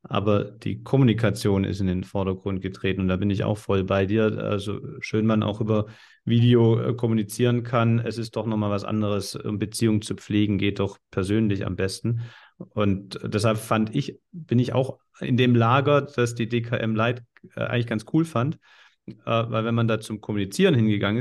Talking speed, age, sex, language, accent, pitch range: 185 wpm, 40-59, male, German, German, 100-115 Hz